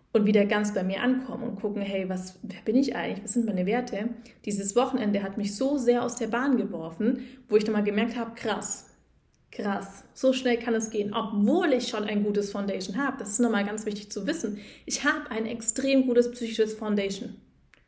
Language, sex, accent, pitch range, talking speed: German, female, German, 210-245 Hz, 210 wpm